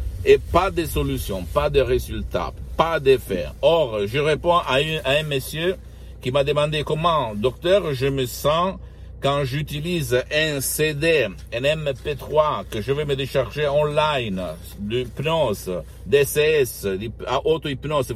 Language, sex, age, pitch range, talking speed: Italian, male, 60-79, 110-160 Hz, 135 wpm